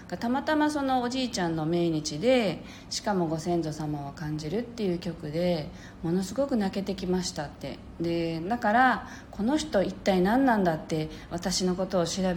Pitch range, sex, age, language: 170-250 Hz, female, 40-59, Japanese